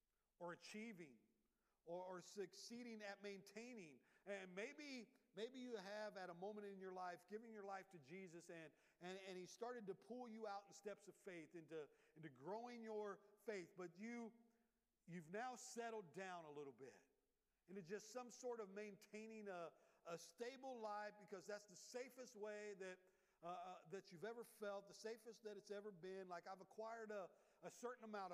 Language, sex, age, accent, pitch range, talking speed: English, male, 50-69, American, 190-240 Hz, 180 wpm